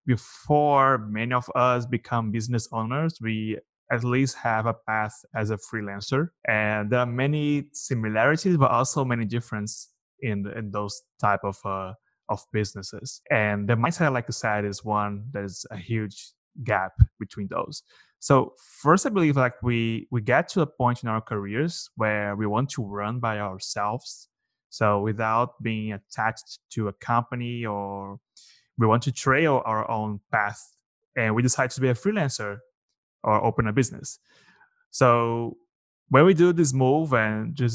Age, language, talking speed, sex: 20-39, English, 165 wpm, male